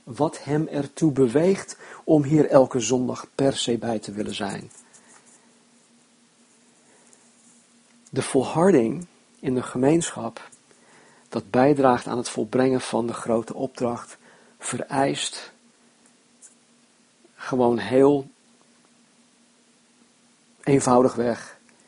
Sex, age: male, 50-69